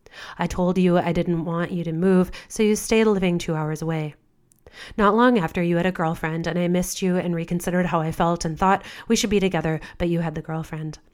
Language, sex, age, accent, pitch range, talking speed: English, female, 30-49, American, 160-180 Hz, 230 wpm